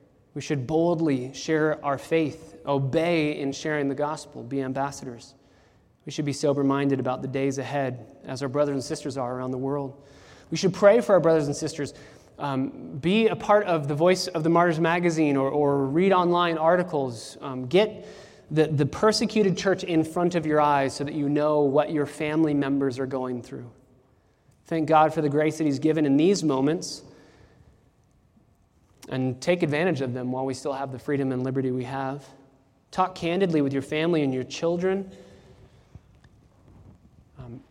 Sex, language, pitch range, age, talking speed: male, English, 135-165 Hz, 20-39, 175 wpm